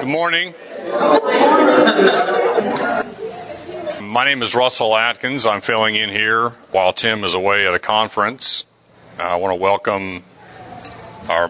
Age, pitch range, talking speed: 40-59, 95-110 Hz, 120 wpm